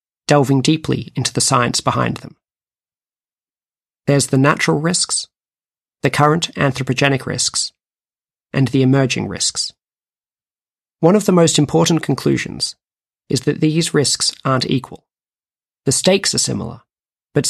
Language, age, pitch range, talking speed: English, 40-59, 125-155 Hz, 125 wpm